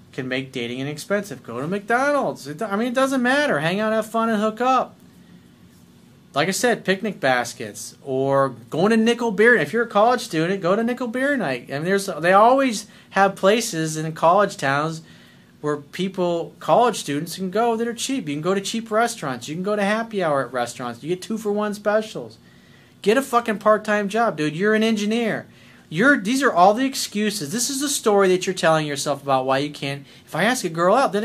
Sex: male